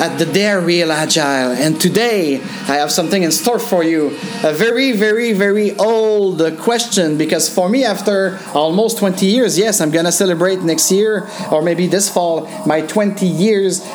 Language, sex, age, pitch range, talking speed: English, male, 30-49, 170-220 Hz, 170 wpm